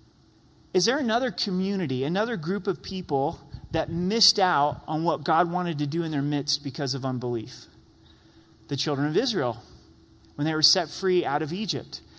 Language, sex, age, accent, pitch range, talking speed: English, male, 30-49, American, 145-195 Hz, 170 wpm